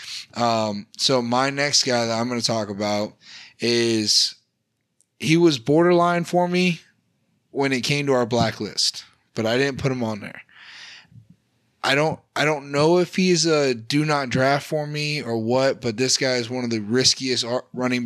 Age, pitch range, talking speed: 20-39, 115-150 Hz, 180 wpm